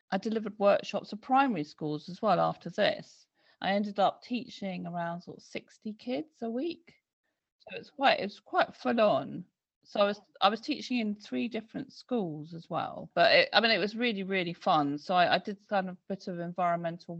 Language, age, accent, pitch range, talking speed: English, 40-59, British, 155-215 Hz, 200 wpm